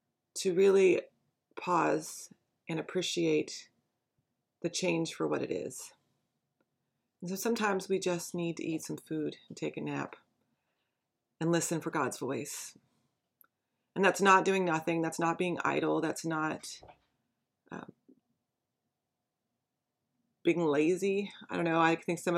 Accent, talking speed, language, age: American, 135 wpm, English, 30-49